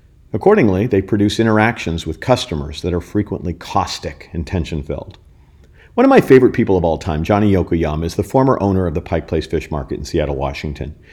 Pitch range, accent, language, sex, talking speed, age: 80-100 Hz, American, English, male, 190 wpm, 50-69